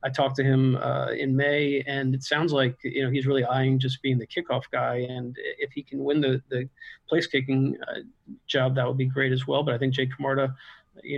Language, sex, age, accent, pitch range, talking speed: English, male, 50-69, American, 130-140 Hz, 235 wpm